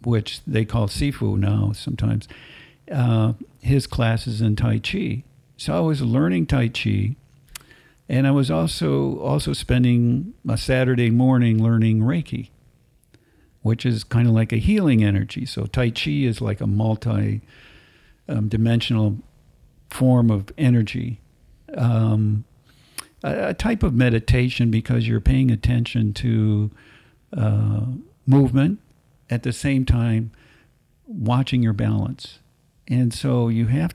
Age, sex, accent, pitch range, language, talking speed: 50-69, male, American, 110-130 Hz, English, 125 wpm